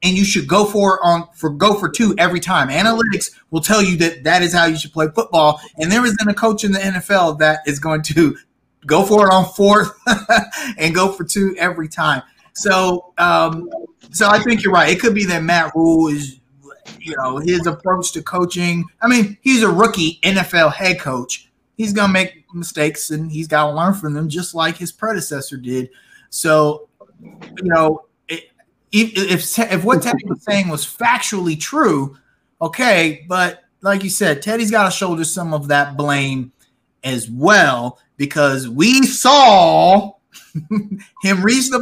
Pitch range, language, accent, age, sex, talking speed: 160-220 Hz, English, American, 30-49, male, 180 wpm